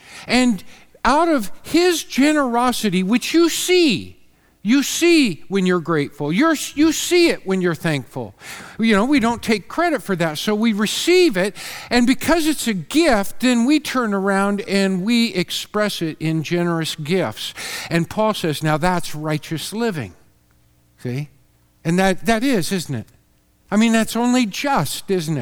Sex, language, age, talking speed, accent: male, English, 50-69, 160 wpm, American